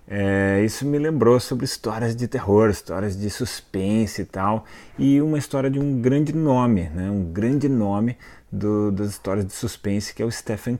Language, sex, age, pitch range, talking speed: Portuguese, male, 30-49, 100-115 Hz, 170 wpm